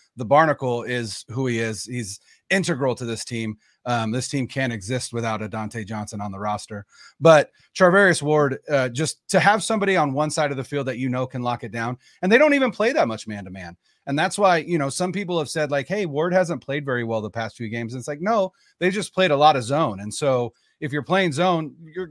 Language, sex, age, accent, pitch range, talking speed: English, male, 30-49, American, 115-165 Hz, 245 wpm